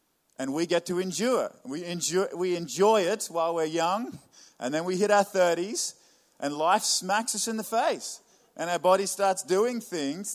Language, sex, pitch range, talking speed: English, male, 130-185 Hz, 180 wpm